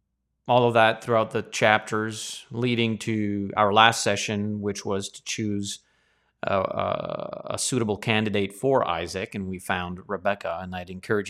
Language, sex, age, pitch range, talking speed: English, male, 30-49, 95-120 Hz, 150 wpm